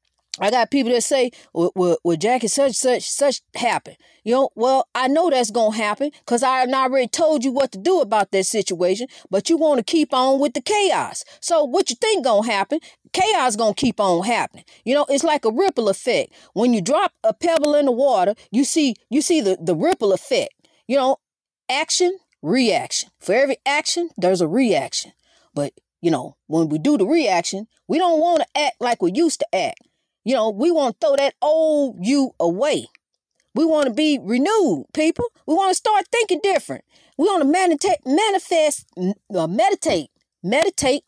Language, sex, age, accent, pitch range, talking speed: English, female, 40-59, American, 210-315 Hz, 195 wpm